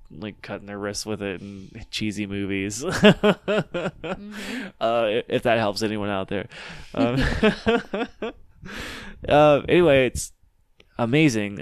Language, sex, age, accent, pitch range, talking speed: English, male, 20-39, American, 100-120 Hz, 110 wpm